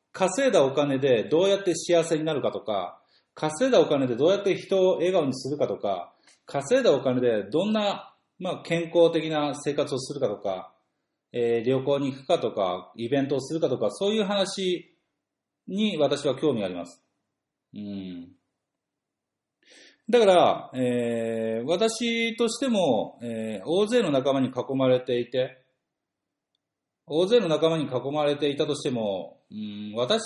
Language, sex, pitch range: Japanese, male, 120-190 Hz